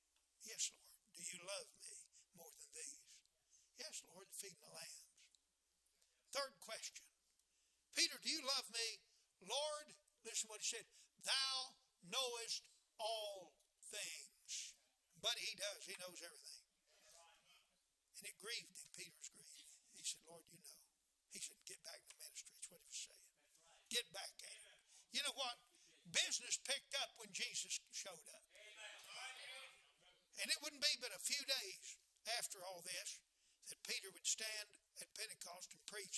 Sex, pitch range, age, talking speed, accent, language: male, 205-280 Hz, 60-79, 155 wpm, American, English